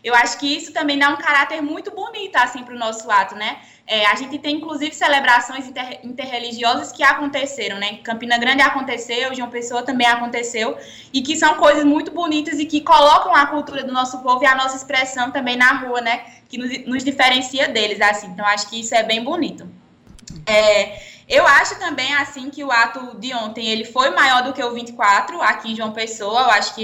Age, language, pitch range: 20-39, Portuguese, 230-275 Hz